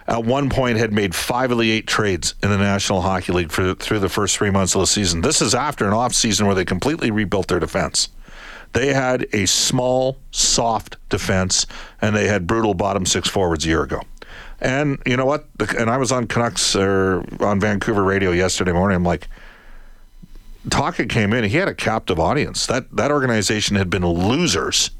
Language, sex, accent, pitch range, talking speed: English, male, American, 100-125 Hz, 200 wpm